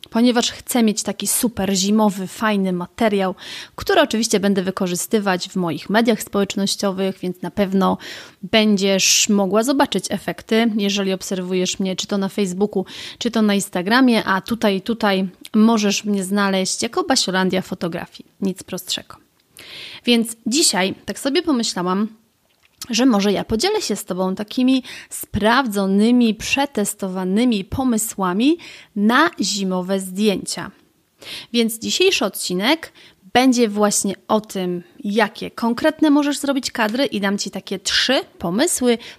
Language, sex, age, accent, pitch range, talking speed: Polish, female, 30-49, native, 190-240 Hz, 125 wpm